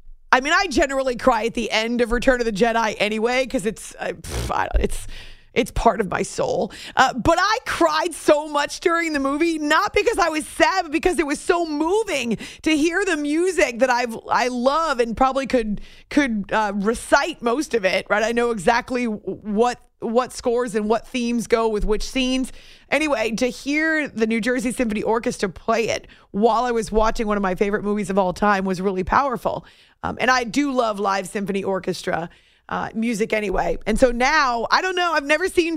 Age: 30-49